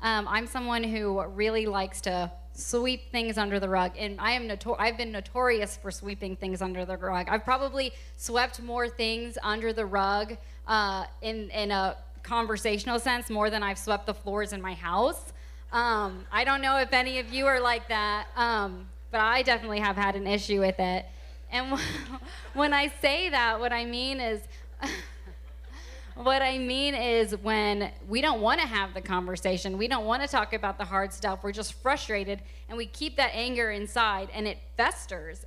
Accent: American